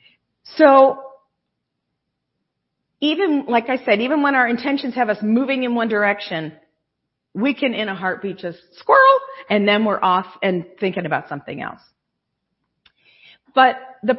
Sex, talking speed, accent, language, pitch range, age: female, 140 wpm, American, English, 185-270 Hz, 40-59